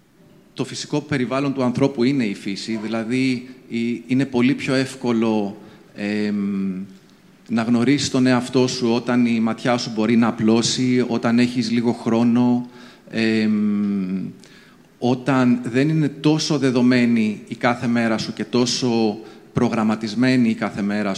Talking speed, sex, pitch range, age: 130 wpm, male, 110-135 Hz, 30-49